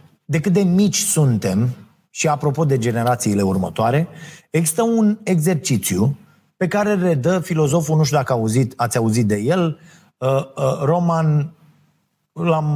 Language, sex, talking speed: Romanian, male, 125 wpm